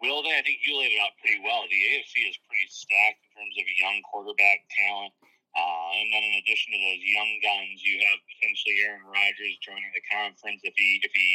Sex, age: male, 30-49